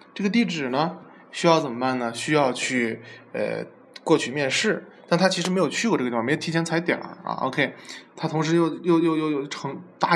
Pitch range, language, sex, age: 125-165 Hz, Chinese, male, 20-39